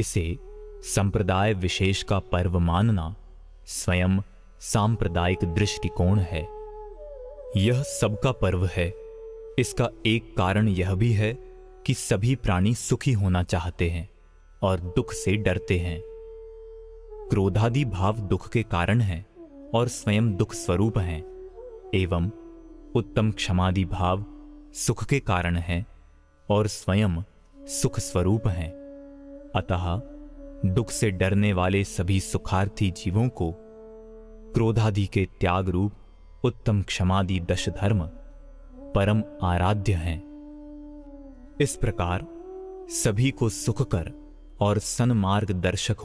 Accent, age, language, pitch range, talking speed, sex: native, 30-49, Hindi, 95-140 Hz, 110 wpm, male